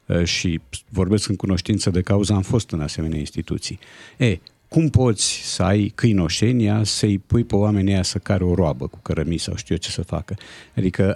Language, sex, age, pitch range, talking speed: Romanian, male, 50-69, 95-120 Hz, 190 wpm